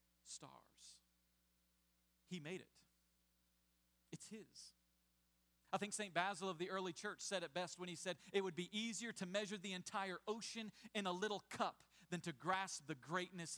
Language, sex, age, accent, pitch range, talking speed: English, male, 40-59, American, 155-220 Hz, 170 wpm